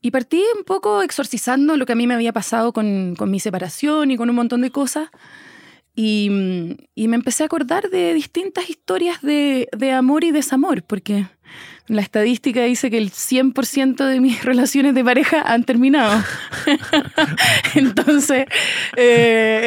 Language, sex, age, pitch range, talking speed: English, female, 20-39, 200-280 Hz, 160 wpm